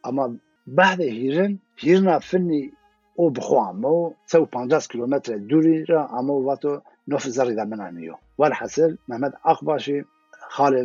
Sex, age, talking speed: male, 50-69, 115 wpm